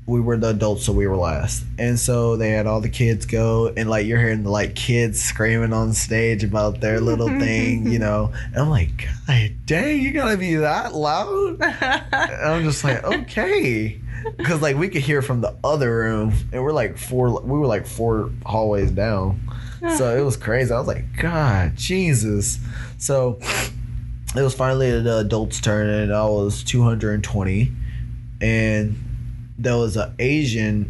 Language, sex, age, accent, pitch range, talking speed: English, male, 20-39, American, 110-130 Hz, 175 wpm